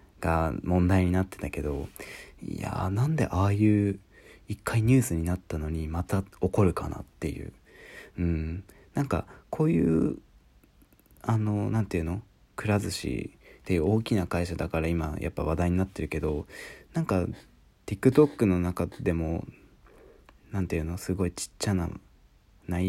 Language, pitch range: Japanese, 85-105 Hz